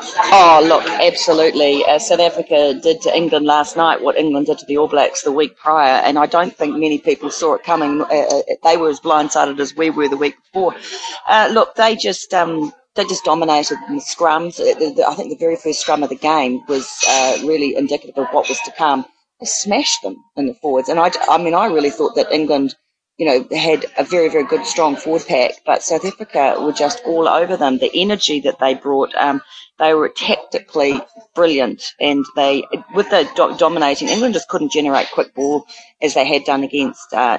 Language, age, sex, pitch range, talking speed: English, 40-59, female, 145-195 Hz, 210 wpm